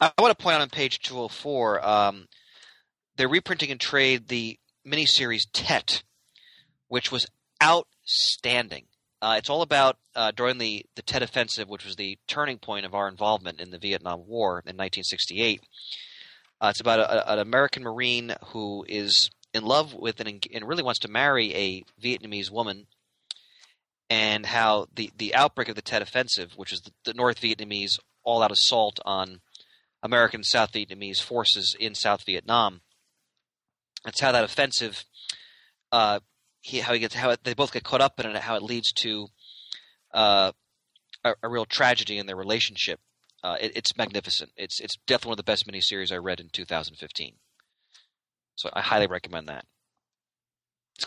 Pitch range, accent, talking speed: 100-125 Hz, American, 175 wpm